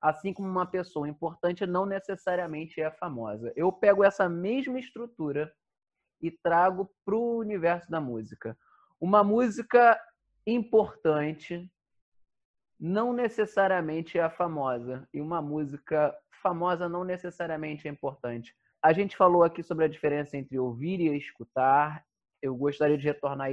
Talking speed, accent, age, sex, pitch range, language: 135 wpm, Brazilian, 20-39, male, 135-190 Hz, Portuguese